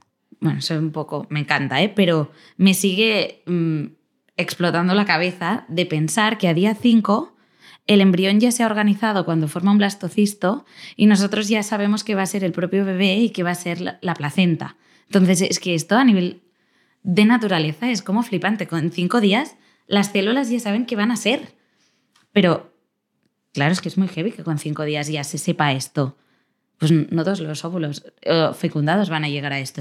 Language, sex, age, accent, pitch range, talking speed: Spanish, female, 20-39, Spanish, 160-210 Hz, 195 wpm